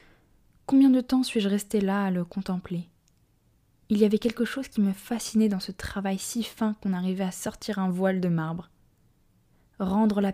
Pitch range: 185-215 Hz